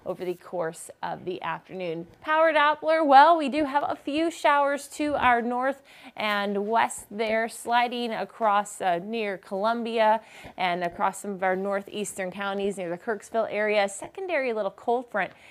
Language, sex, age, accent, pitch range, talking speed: English, female, 20-39, American, 185-235 Hz, 160 wpm